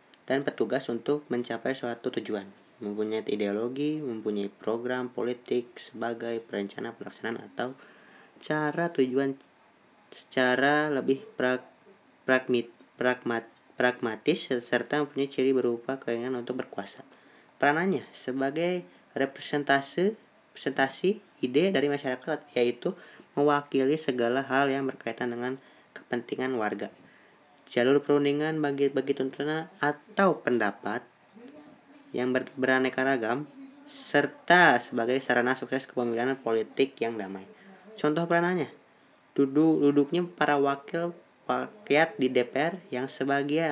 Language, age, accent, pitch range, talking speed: Indonesian, 20-39, native, 125-155 Hz, 100 wpm